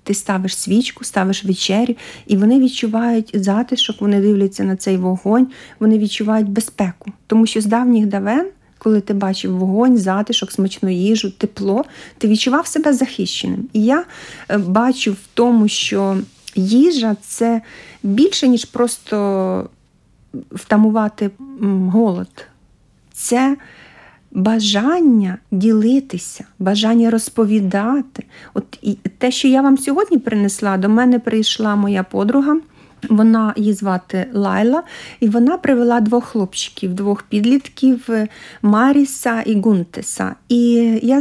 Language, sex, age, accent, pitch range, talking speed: Ukrainian, female, 50-69, native, 200-255 Hz, 115 wpm